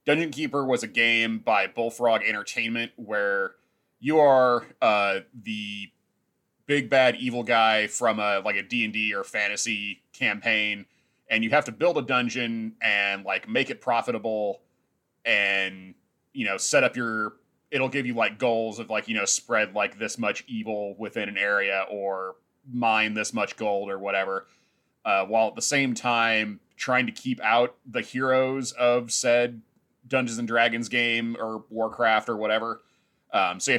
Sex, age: male, 30-49